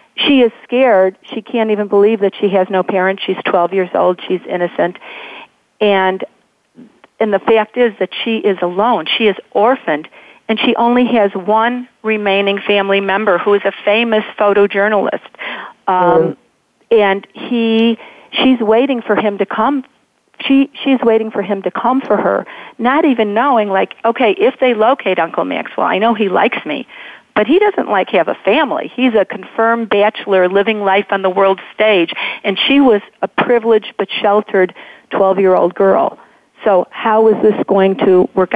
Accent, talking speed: American, 170 wpm